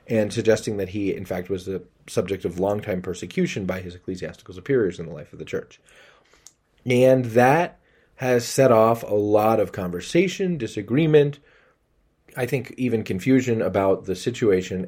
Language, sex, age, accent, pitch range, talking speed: English, male, 30-49, American, 90-130 Hz, 155 wpm